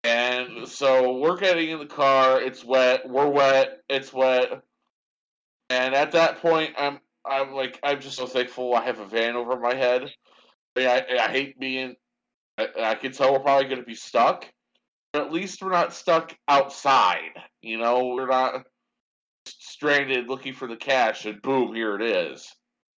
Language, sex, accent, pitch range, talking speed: English, male, American, 120-140 Hz, 170 wpm